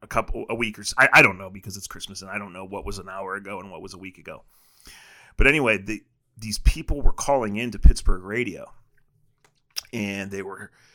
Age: 30-49